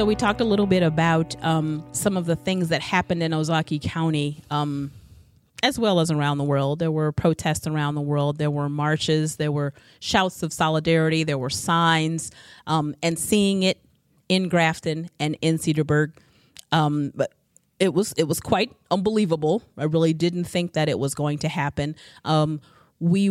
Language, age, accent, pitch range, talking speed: English, 40-59, American, 150-175 Hz, 180 wpm